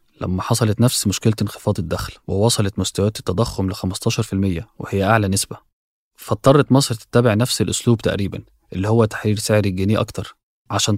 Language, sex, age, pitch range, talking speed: Arabic, male, 20-39, 95-115 Hz, 150 wpm